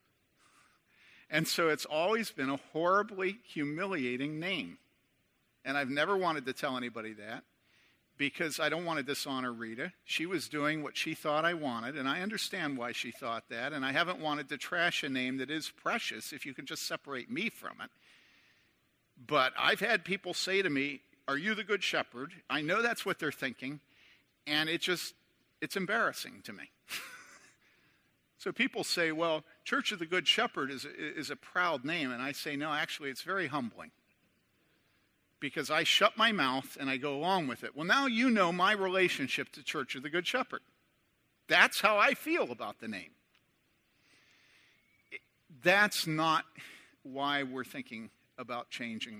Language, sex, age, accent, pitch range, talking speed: English, male, 50-69, American, 135-185 Hz, 175 wpm